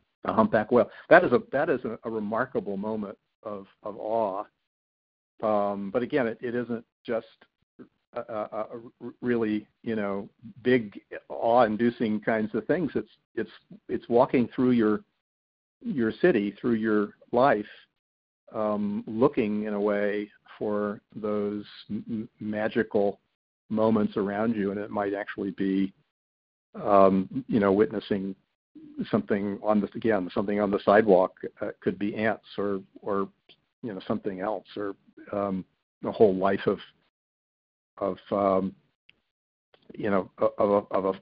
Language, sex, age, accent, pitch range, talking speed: English, male, 50-69, American, 100-115 Hz, 145 wpm